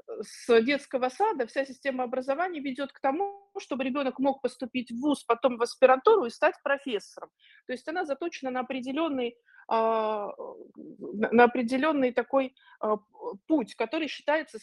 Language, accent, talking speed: Russian, native, 135 wpm